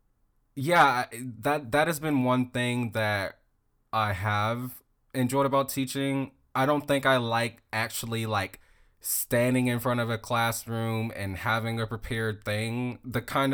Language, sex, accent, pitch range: English, male, American, 105-125 Hz